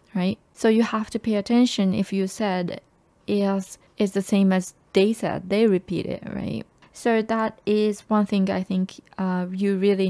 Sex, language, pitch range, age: female, Japanese, 180-205 Hz, 20-39